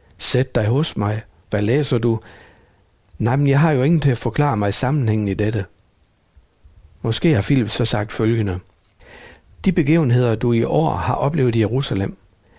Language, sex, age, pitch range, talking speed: Danish, male, 60-79, 100-130 Hz, 170 wpm